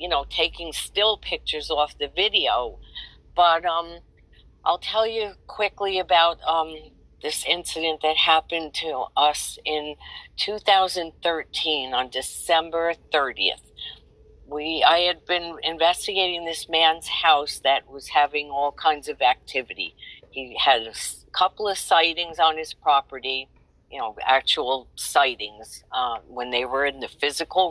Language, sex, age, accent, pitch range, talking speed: English, female, 50-69, American, 145-175 Hz, 135 wpm